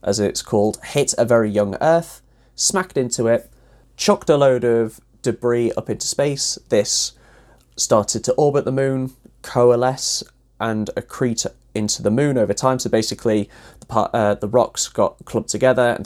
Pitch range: 105-130 Hz